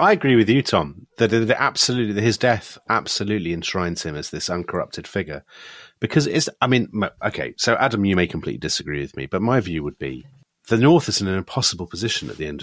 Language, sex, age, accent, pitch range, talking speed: English, male, 40-59, British, 90-125 Hz, 225 wpm